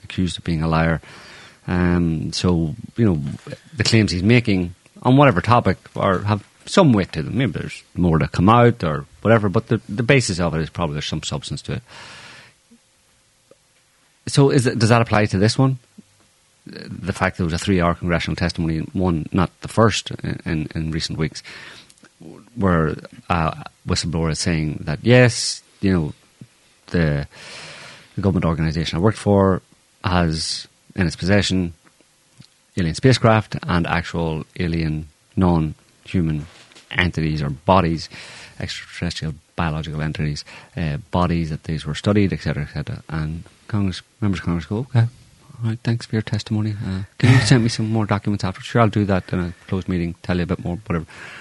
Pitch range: 85-115 Hz